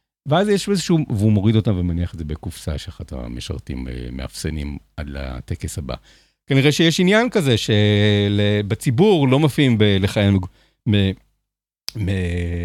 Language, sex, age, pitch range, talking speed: Hebrew, male, 50-69, 85-115 Hz, 130 wpm